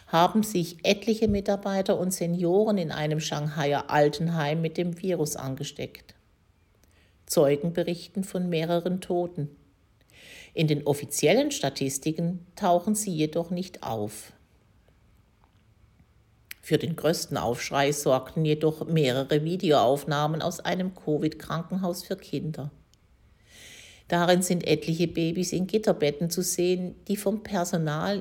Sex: female